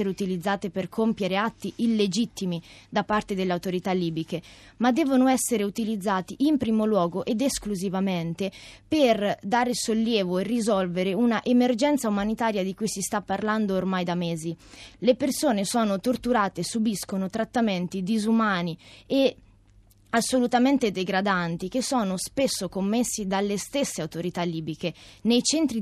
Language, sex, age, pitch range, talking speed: Italian, female, 20-39, 180-225 Hz, 130 wpm